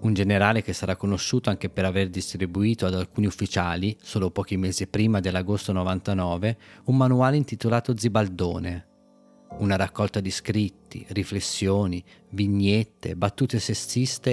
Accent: native